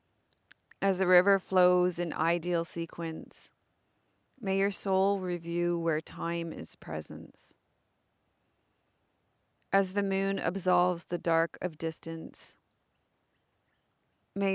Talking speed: 100 wpm